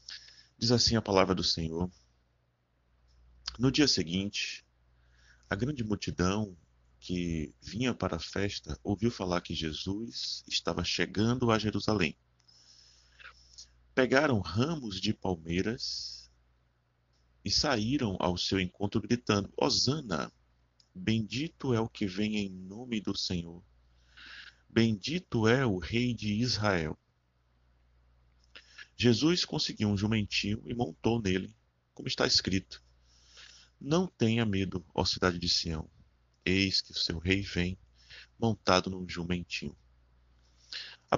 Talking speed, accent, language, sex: 115 wpm, Brazilian, Portuguese, male